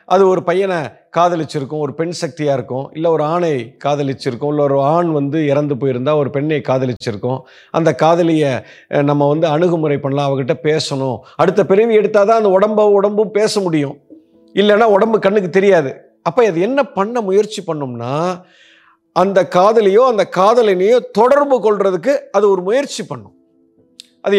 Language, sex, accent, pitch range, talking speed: Tamil, male, native, 145-215 Hz, 145 wpm